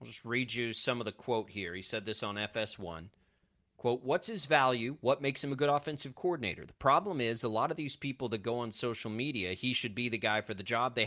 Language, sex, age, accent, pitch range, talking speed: English, male, 30-49, American, 105-130 Hz, 255 wpm